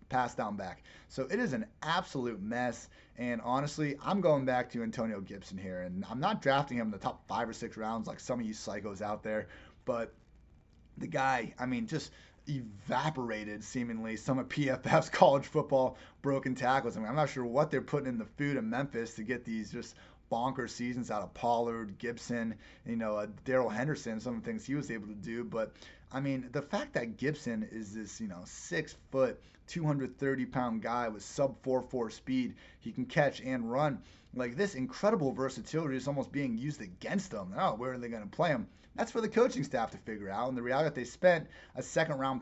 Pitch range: 115-150 Hz